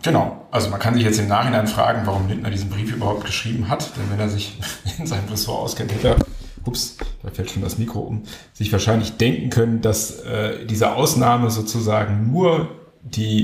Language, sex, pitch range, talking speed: German, male, 100-120 Hz, 195 wpm